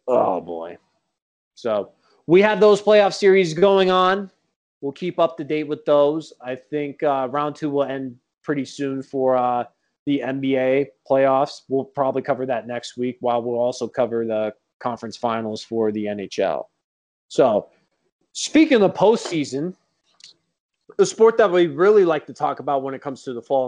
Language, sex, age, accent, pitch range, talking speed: English, male, 20-39, American, 130-175 Hz, 165 wpm